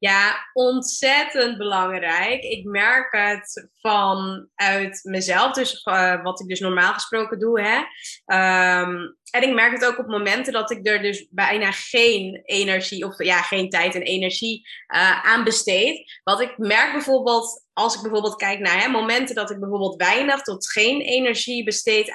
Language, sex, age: Dutch, female, 20-39